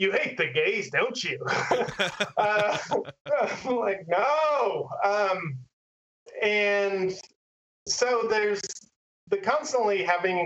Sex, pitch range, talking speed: male, 170-235 Hz, 100 wpm